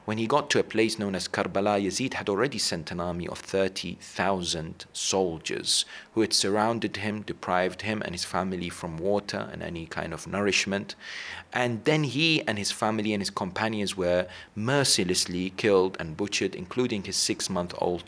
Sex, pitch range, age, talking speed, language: male, 90-110 Hz, 40-59, 170 wpm, English